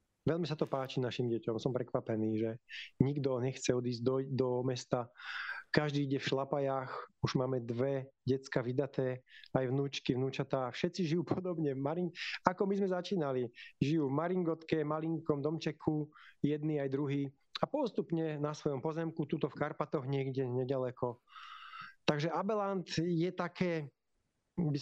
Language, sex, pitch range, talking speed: Slovak, male, 125-155 Hz, 140 wpm